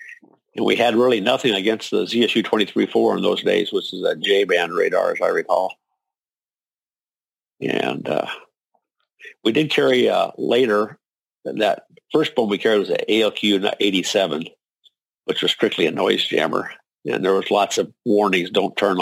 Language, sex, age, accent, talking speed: English, male, 50-69, American, 150 wpm